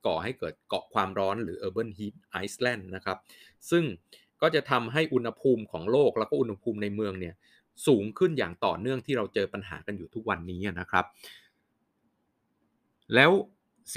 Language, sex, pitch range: Thai, male, 100-125 Hz